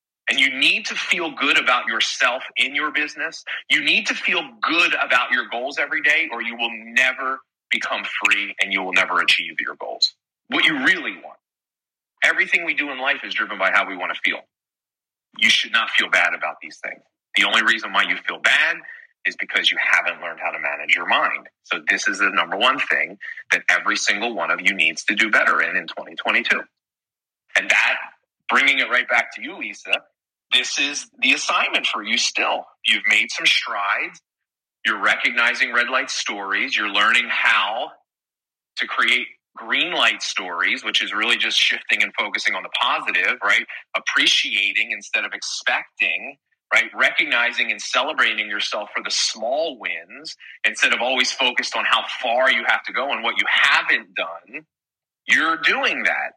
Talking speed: 185 wpm